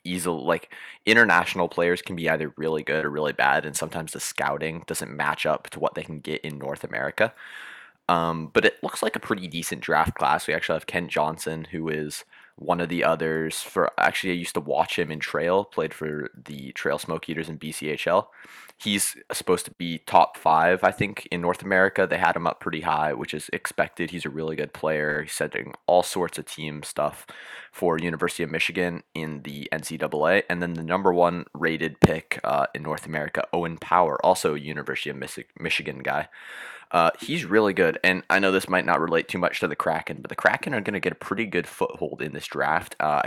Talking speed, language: 215 wpm, English